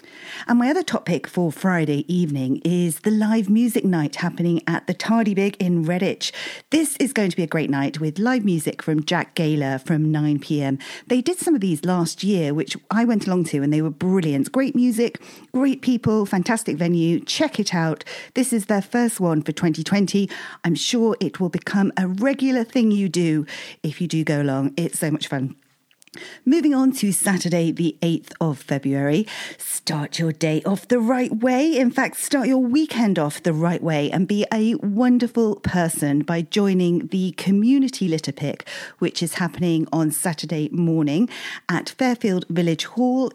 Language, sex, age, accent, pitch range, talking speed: English, female, 40-59, British, 165-240 Hz, 180 wpm